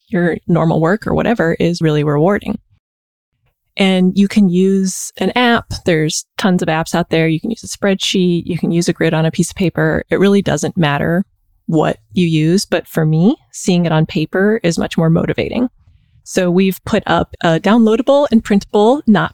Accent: American